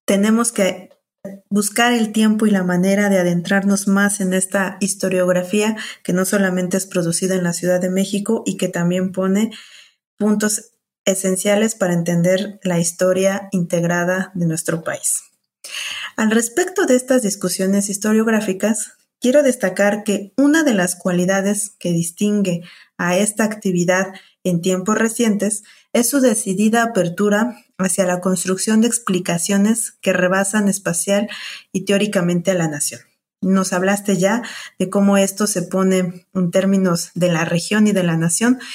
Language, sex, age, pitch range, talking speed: Spanish, female, 30-49, 185-215 Hz, 145 wpm